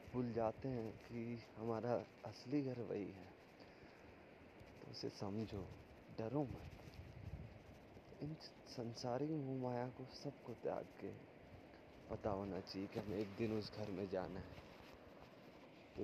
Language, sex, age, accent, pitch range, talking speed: Hindi, male, 20-39, native, 100-120 Hz, 125 wpm